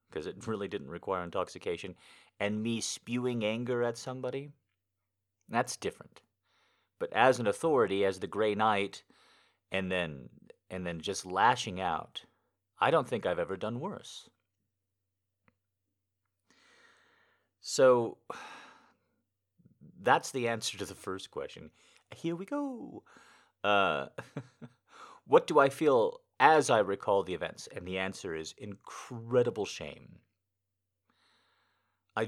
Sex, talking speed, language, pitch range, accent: male, 120 wpm, English, 95-125 Hz, American